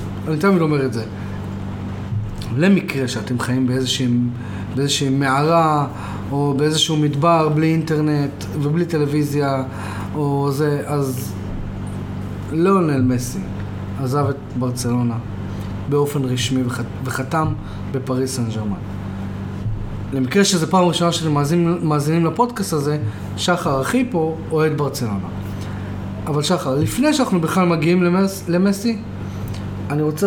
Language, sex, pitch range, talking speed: Hebrew, male, 100-160 Hz, 115 wpm